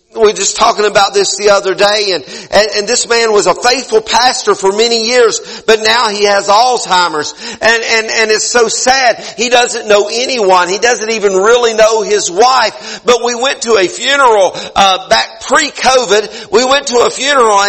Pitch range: 215-275 Hz